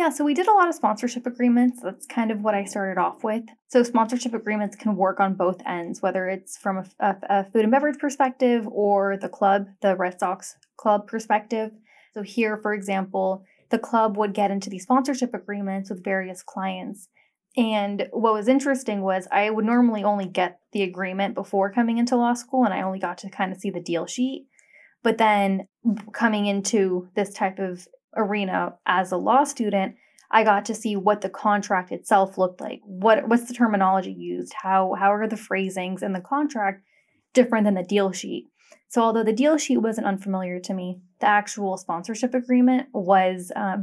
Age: 10-29